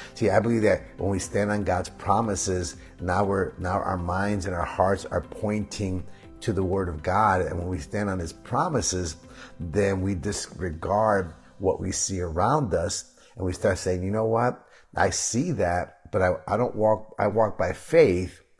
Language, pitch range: English, 90-105 Hz